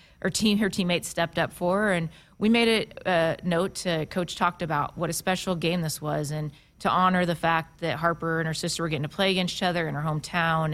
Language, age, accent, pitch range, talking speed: English, 30-49, American, 155-175 Hz, 245 wpm